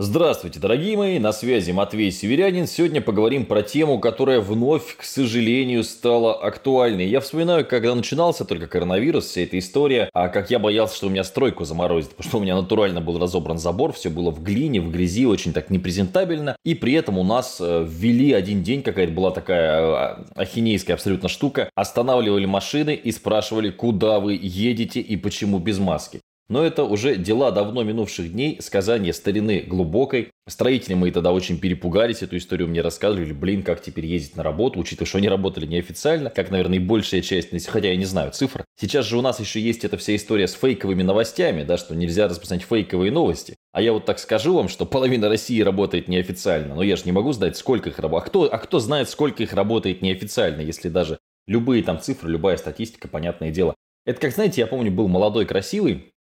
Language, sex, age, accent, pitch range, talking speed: Russian, male, 20-39, native, 90-120 Hz, 190 wpm